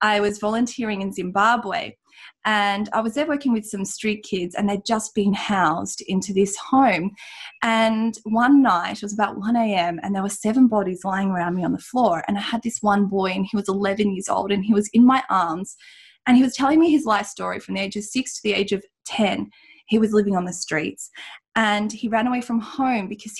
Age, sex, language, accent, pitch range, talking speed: 20-39, female, English, Australian, 200-235 Hz, 230 wpm